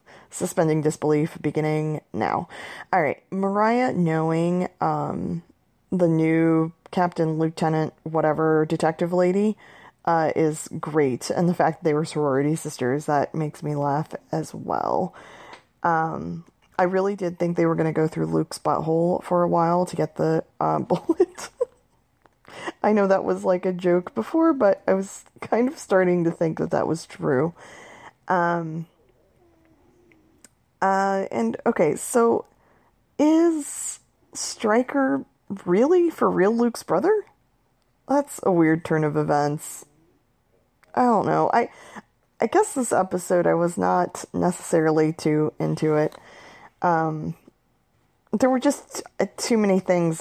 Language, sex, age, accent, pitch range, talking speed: English, female, 20-39, American, 155-190 Hz, 135 wpm